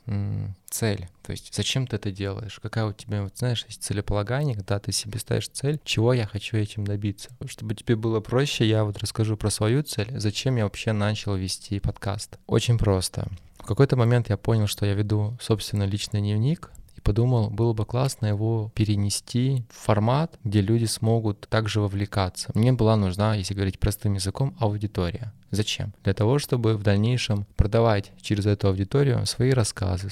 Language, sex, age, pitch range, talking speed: Russian, male, 20-39, 100-120 Hz, 170 wpm